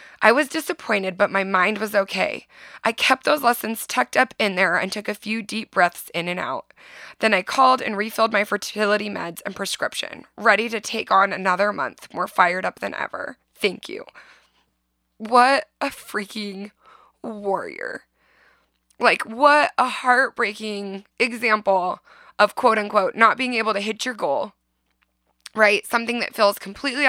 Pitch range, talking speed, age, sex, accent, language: 195-235 Hz, 160 wpm, 20-39, female, American, English